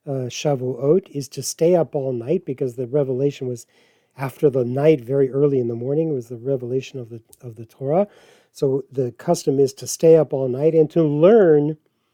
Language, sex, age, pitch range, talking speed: English, male, 40-59, 130-170 Hz, 200 wpm